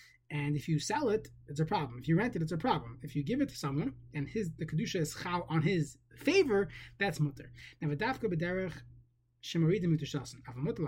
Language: English